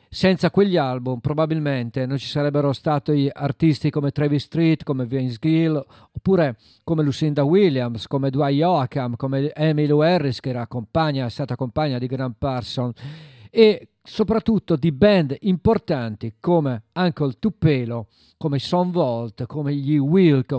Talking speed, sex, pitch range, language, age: 135 wpm, male, 130-160 Hz, Italian, 50-69